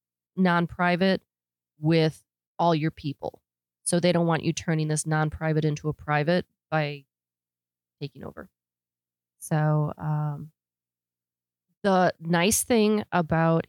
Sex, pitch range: female, 145-180 Hz